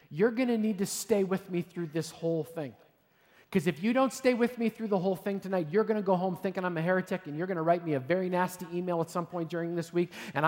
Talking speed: 285 wpm